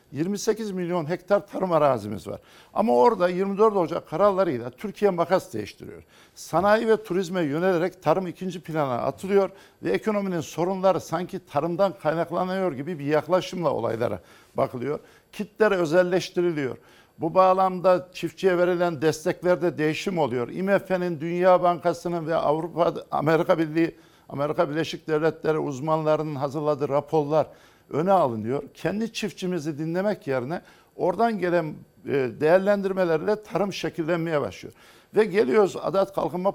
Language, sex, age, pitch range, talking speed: Turkish, male, 60-79, 155-195 Hz, 115 wpm